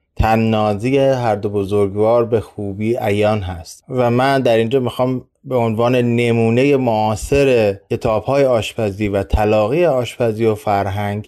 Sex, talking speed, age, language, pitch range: male, 135 wpm, 20-39, Persian, 110-135 Hz